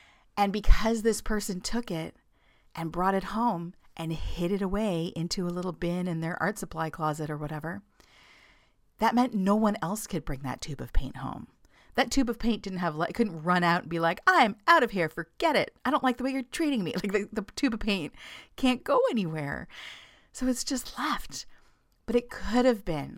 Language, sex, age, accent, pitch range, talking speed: English, female, 40-59, American, 165-225 Hz, 210 wpm